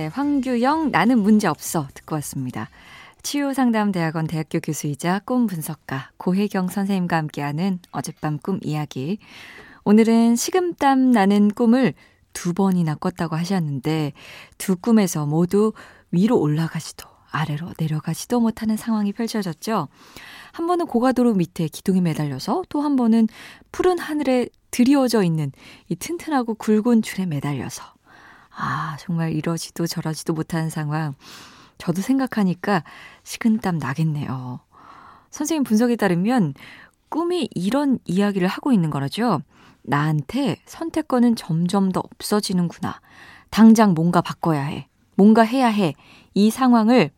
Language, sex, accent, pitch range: Korean, female, native, 155-230 Hz